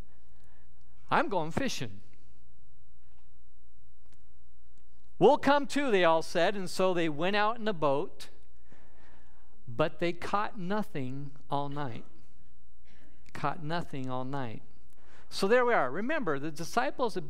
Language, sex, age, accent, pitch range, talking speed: English, male, 50-69, American, 135-195 Hz, 120 wpm